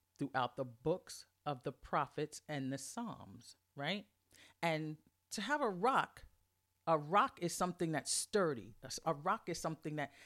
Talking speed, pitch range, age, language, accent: 150 wpm, 130-190 Hz, 40-59, English, American